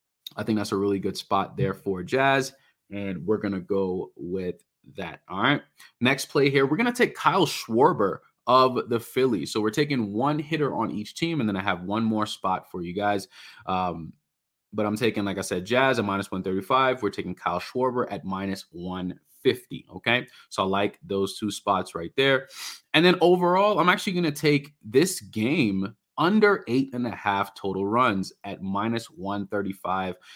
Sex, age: male, 30-49